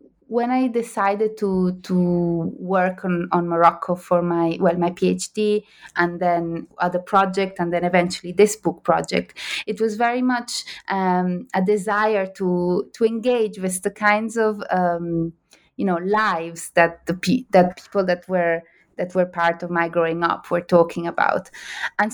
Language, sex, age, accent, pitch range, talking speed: English, female, 20-39, Italian, 170-205 Hz, 165 wpm